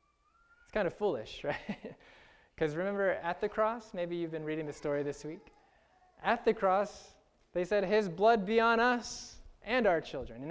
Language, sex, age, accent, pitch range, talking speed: English, male, 20-39, American, 160-215 Hz, 175 wpm